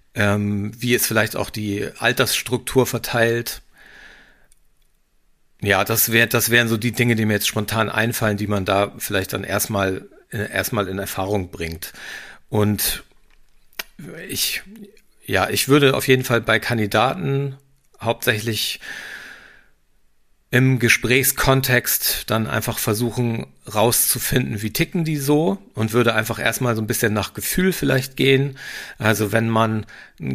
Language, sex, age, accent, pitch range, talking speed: German, male, 50-69, German, 105-125 Hz, 130 wpm